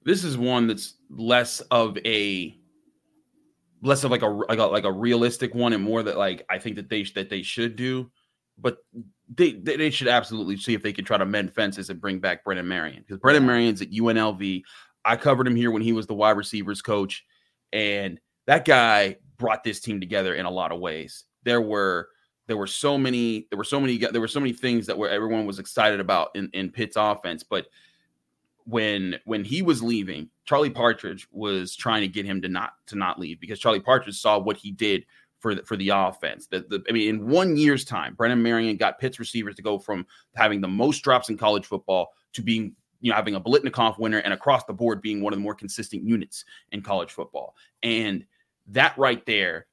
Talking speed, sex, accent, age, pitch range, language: 215 wpm, male, American, 30-49, 100-125 Hz, English